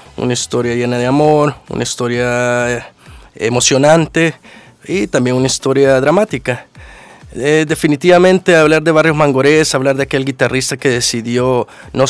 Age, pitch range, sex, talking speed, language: 30-49, 120-145 Hz, male, 130 wpm, English